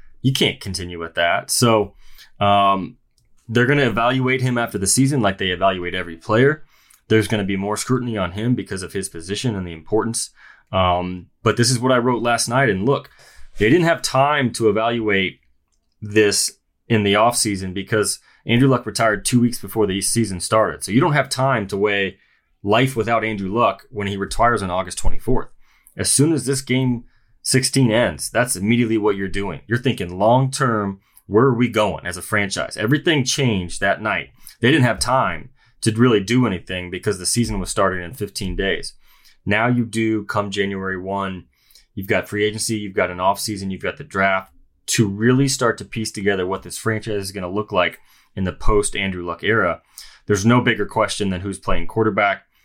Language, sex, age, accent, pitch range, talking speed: English, male, 20-39, American, 95-120 Hz, 195 wpm